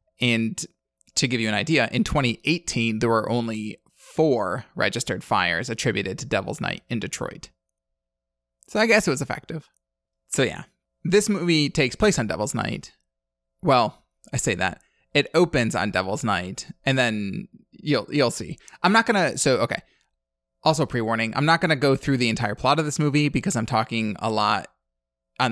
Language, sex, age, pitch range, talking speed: English, male, 20-39, 110-145 Hz, 175 wpm